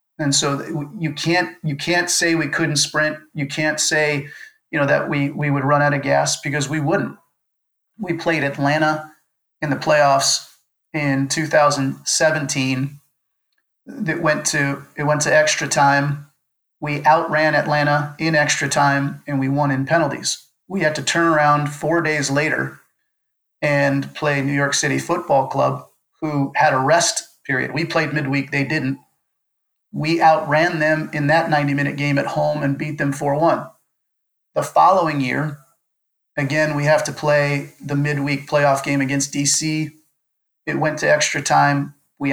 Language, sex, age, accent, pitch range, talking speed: English, male, 40-59, American, 140-155 Hz, 155 wpm